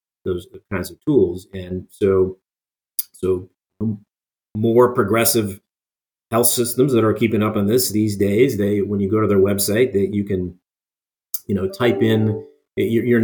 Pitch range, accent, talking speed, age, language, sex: 100-115 Hz, American, 155 wpm, 40-59, English, male